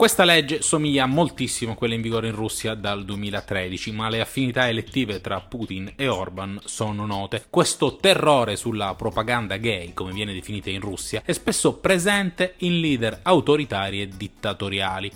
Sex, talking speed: male, 160 wpm